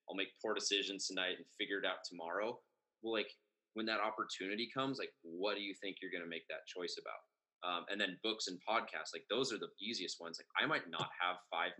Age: 20-39